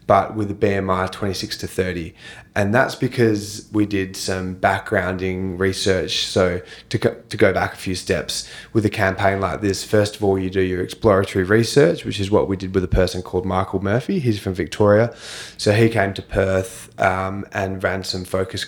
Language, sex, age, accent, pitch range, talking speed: English, male, 20-39, Australian, 95-105 Hz, 195 wpm